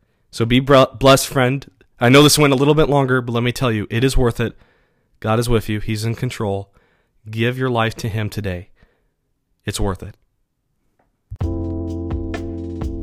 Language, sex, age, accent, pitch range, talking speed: English, male, 20-39, American, 105-125 Hz, 170 wpm